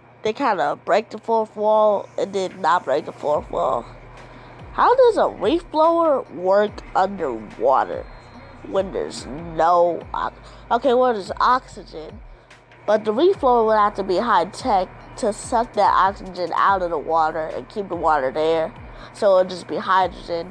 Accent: American